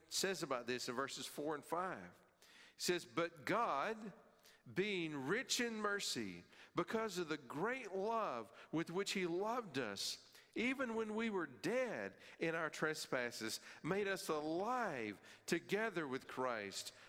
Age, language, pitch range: 50-69, English, 120-185 Hz